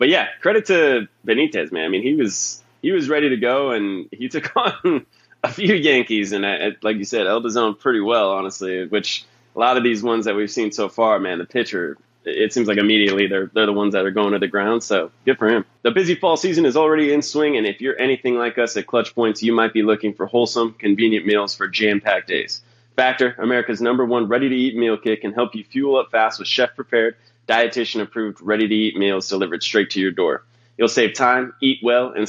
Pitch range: 105-125 Hz